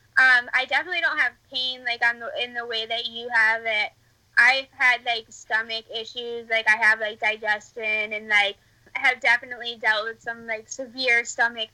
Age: 10-29